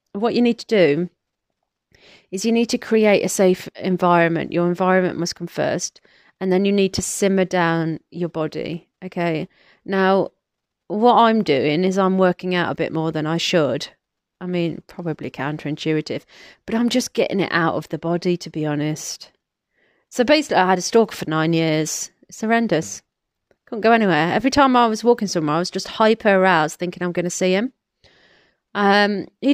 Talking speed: 185 wpm